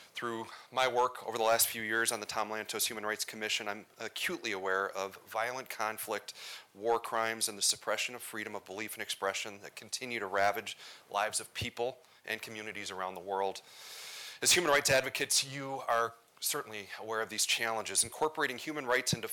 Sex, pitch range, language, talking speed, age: male, 105-125 Hz, English, 185 wpm, 30-49